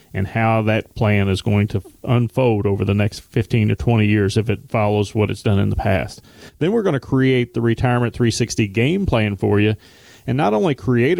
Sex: male